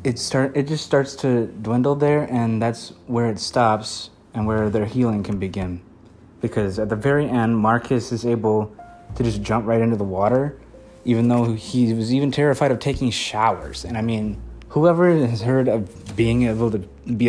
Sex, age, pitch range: male, 20-39, 105-125 Hz